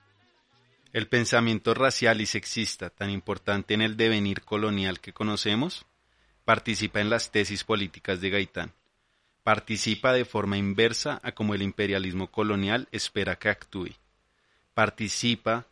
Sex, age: male, 30-49